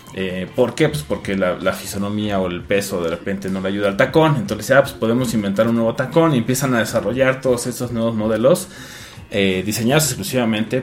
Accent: Mexican